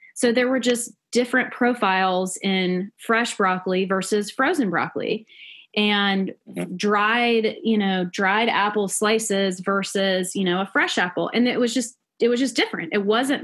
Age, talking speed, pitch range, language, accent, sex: 20-39, 155 wpm, 180-220 Hz, English, American, female